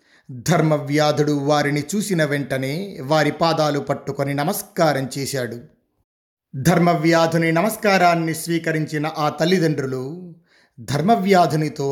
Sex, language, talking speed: male, Telugu, 75 wpm